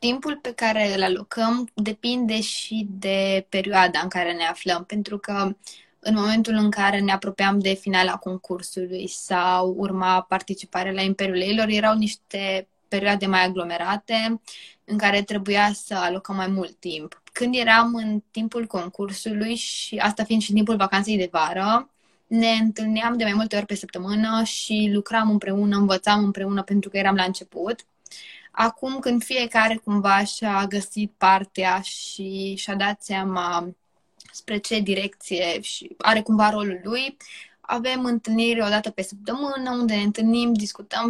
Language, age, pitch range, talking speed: Romanian, 20-39, 195-225 Hz, 150 wpm